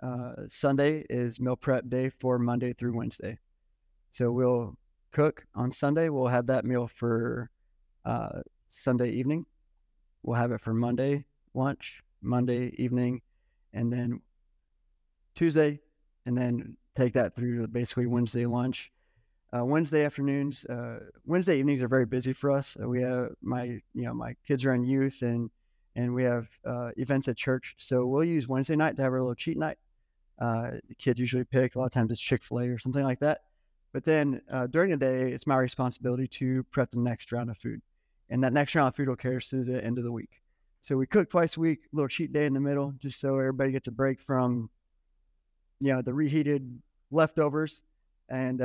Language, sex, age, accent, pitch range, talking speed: English, male, 20-39, American, 120-135 Hz, 190 wpm